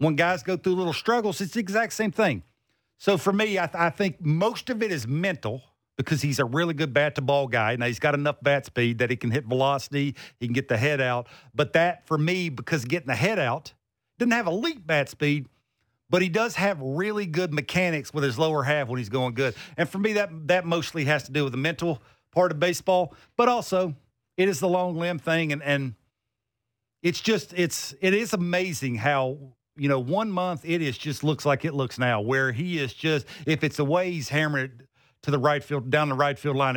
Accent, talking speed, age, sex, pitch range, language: American, 230 wpm, 50-69, male, 135-185 Hz, English